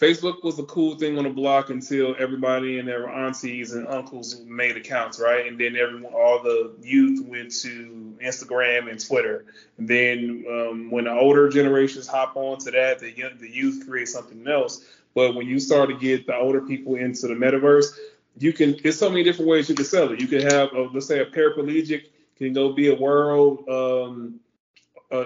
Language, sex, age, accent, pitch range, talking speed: English, male, 20-39, American, 125-145 Hz, 200 wpm